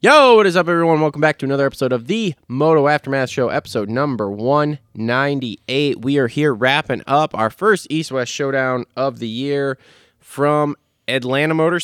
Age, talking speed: 20-39, 165 wpm